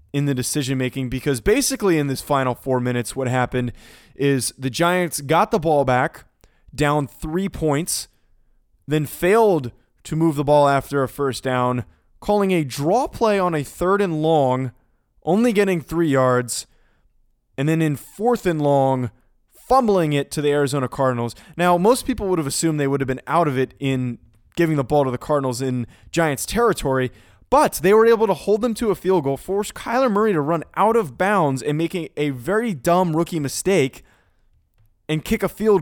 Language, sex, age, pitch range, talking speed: English, male, 20-39, 130-180 Hz, 185 wpm